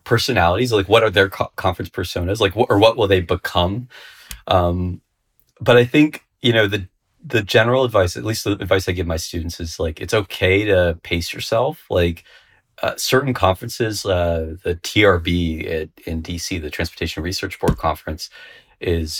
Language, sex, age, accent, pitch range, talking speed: English, male, 30-49, American, 80-95 Hz, 175 wpm